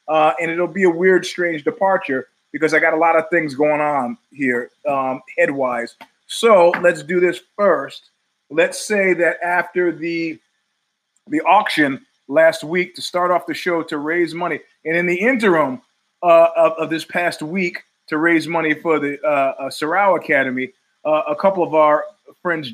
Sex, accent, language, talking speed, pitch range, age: male, American, English, 175 wpm, 150-180 Hz, 30-49